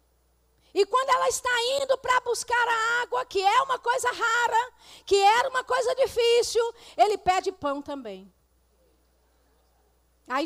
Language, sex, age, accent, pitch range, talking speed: Portuguese, female, 40-59, Brazilian, 280-425 Hz, 140 wpm